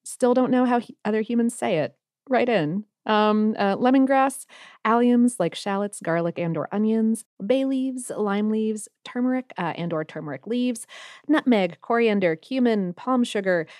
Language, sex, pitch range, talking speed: English, female, 175-240 Hz, 150 wpm